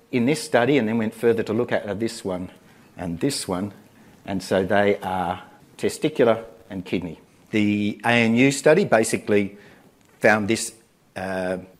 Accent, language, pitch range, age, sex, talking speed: Australian, English, 100-140 Hz, 50-69, male, 155 wpm